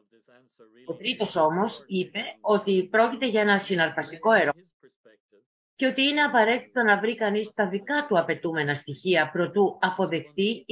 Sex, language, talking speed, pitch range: female, English, 135 wpm, 140-200 Hz